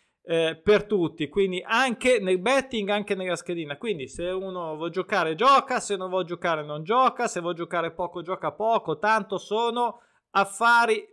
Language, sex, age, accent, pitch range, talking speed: Italian, male, 20-39, native, 165-210 Hz, 165 wpm